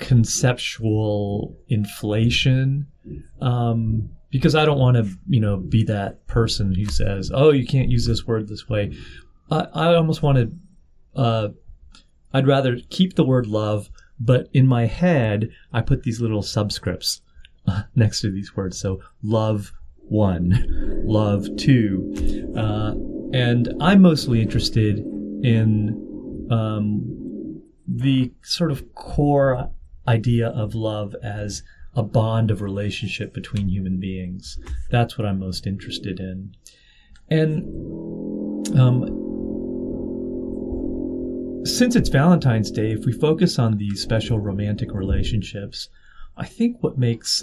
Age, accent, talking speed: 30-49, American, 125 wpm